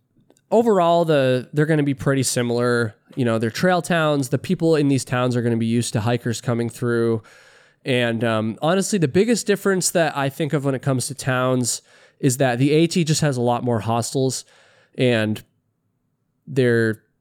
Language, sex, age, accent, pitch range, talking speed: English, male, 20-39, American, 120-155 Hz, 190 wpm